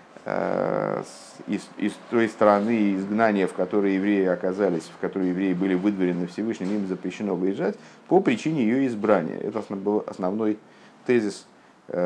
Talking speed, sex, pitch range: 130 wpm, male, 90-110 Hz